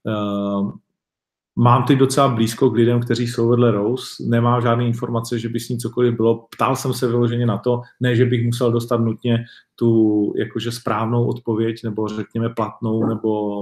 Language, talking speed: Czech, 175 wpm